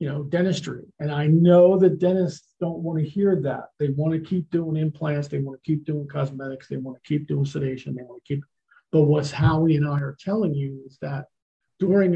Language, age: English, 50-69